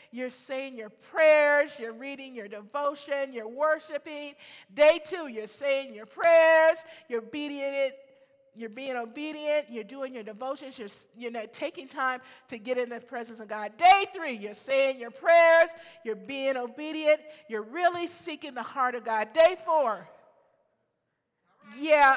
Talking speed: 150 wpm